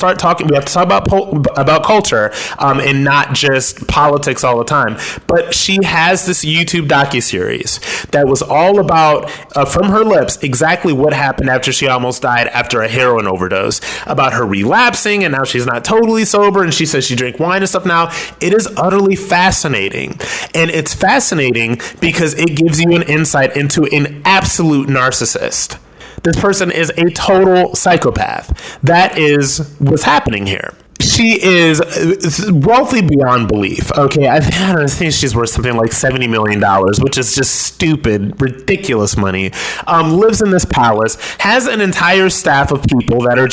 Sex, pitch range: male, 125-175 Hz